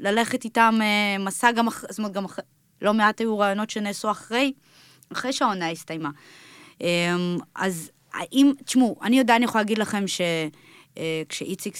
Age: 20-39